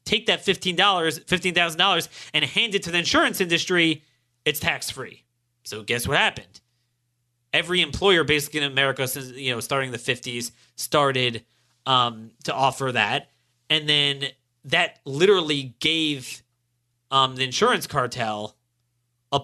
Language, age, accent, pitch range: English, 30-49, American, 120-155 Hz